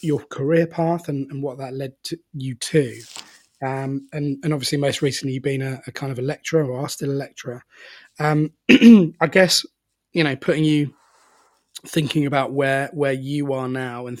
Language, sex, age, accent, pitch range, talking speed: English, male, 20-39, British, 130-145 Hz, 190 wpm